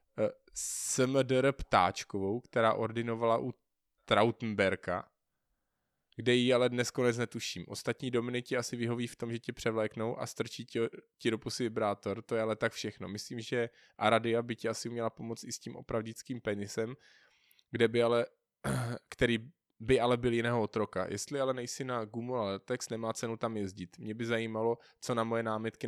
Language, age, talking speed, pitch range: Czech, 20-39, 165 wpm, 110-125 Hz